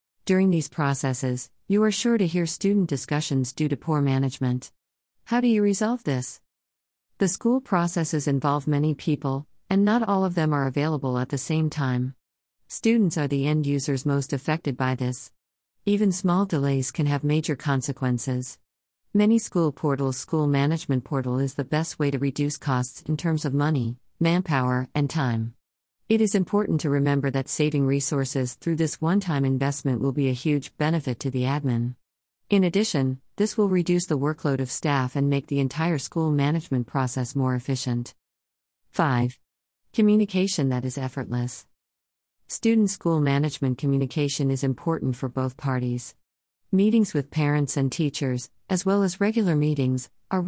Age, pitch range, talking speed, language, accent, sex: 50-69, 130-165 Hz, 160 wpm, English, American, female